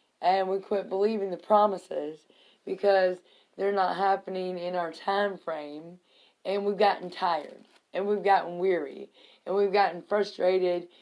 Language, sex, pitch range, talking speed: English, female, 175-205 Hz, 140 wpm